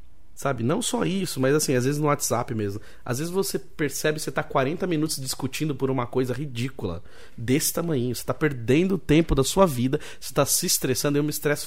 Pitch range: 110-170 Hz